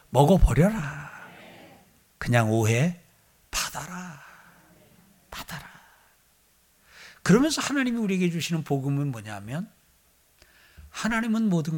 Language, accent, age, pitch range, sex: Korean, native, 60-79, 140-205 Hz, male